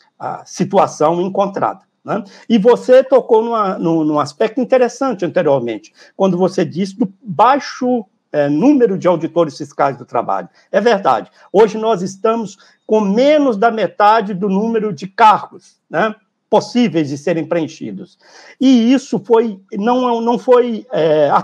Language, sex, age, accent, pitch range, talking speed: Portuguese, male, 60-79, Brazilian, 165-245 Hz, 130 wpm